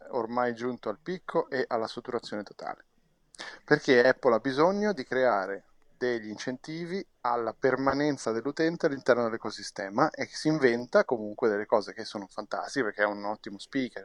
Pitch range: 110-140 Hz